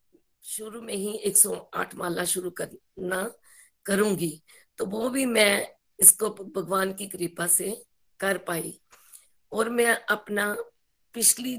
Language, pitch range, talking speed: Hindi, 185-225 Hz, 125 wpm